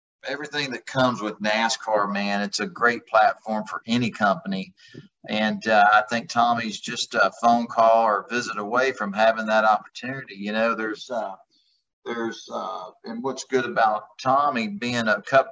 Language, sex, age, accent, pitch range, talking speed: English, male, 40-59, American, 105-125 Hz, 165 wpm